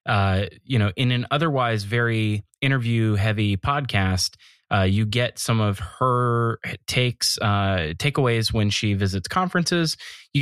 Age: 20-39